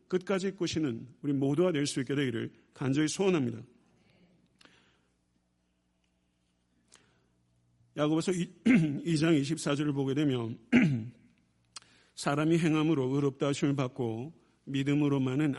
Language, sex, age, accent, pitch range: Korean, male, 50-69, native, 120-155 Hz